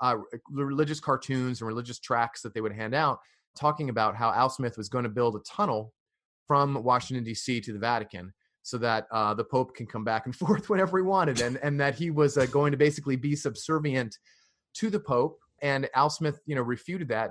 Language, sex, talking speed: English, male, 215 wpm